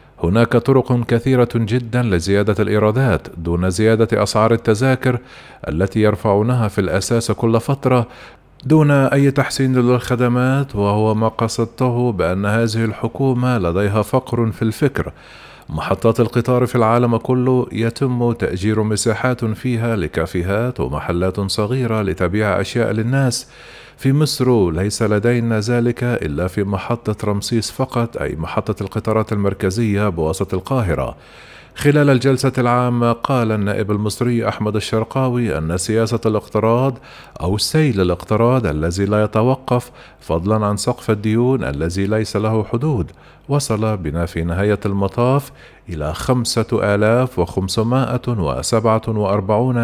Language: Arabic